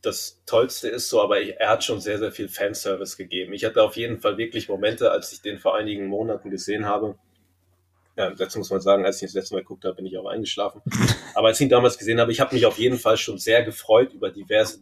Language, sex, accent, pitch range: German, male, German, 95-125 Hz